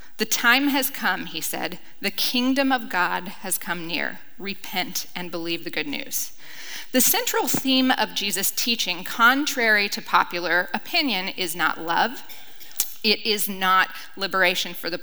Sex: female